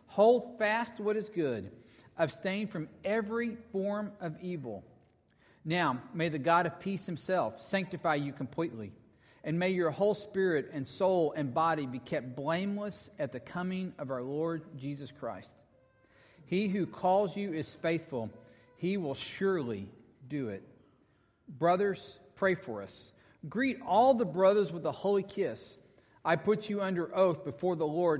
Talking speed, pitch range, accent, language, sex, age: 155 wpm, 130-195 Hz, American, English, male, 40-59